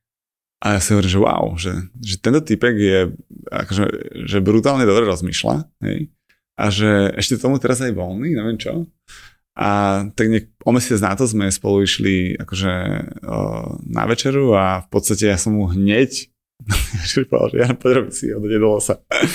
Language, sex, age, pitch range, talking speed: Slovak, male, 20-39, 95-115 Hz, 170 wpm